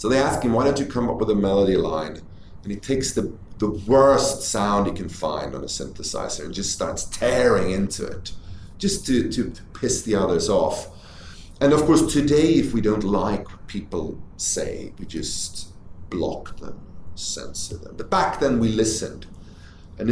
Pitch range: 90-120 Hz